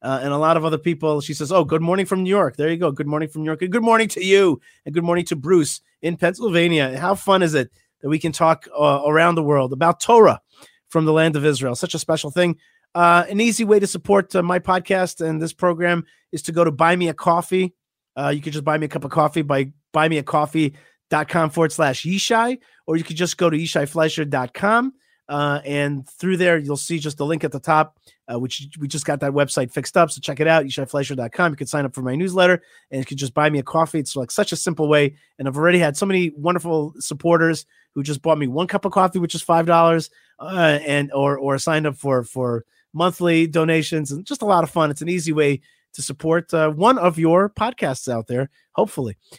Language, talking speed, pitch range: English, 240 wpm, 145-175 Hz